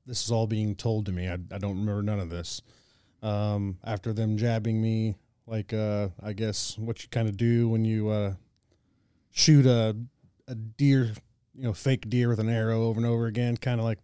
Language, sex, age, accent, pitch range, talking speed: English, male, 30-49, American, 105-120 Hz, 210 wpm